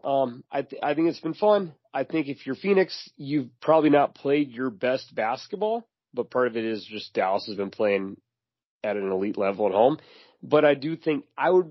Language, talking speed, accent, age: English, 215 wpm, American, 30-49